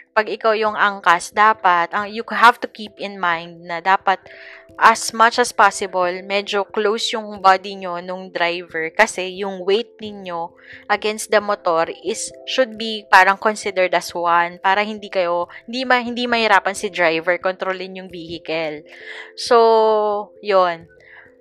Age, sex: 20-39, female